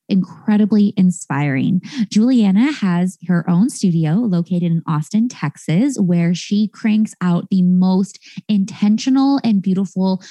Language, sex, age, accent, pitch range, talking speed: English, female, 20-39, American, 175-215 Hz, 115 wpm